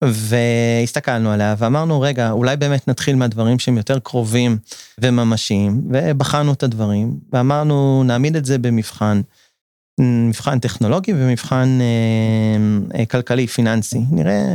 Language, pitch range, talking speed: Hebrew, 115-140 Hz, 110 wpm